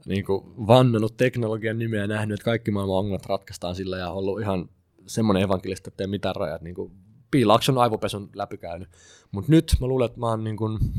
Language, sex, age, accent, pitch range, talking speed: Finnish, male, 20-39, native, 95-115 Hz, 185 wpm